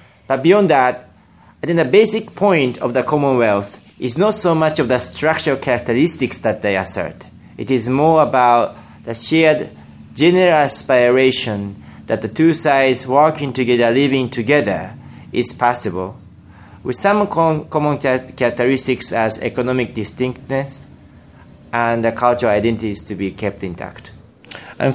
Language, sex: English, male